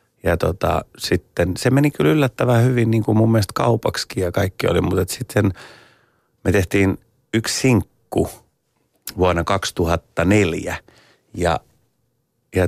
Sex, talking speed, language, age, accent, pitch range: male, 125 wpm, Finnish, 30-49, native, 90-110 Hz